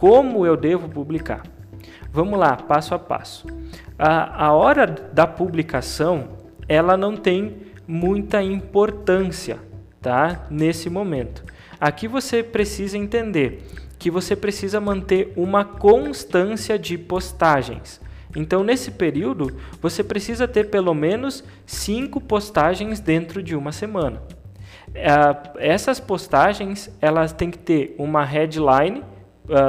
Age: 20-39